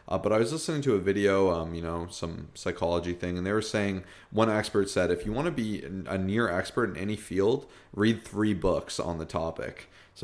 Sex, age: male, 30-49